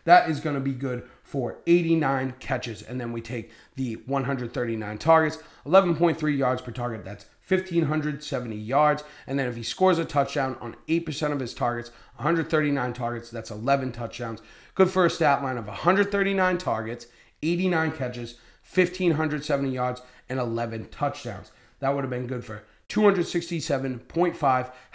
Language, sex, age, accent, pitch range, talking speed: English, male, 30-49, American, 120-160 Hz, 150 wpm